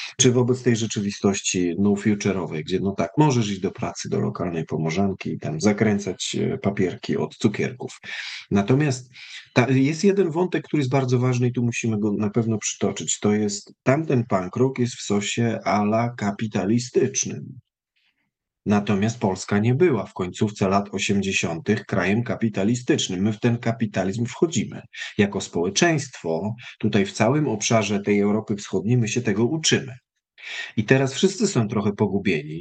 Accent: native